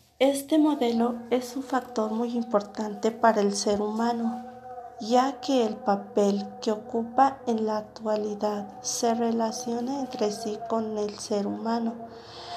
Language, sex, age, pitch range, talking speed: Spanish, female, 40-59, 210-240 Hz, 135 wpm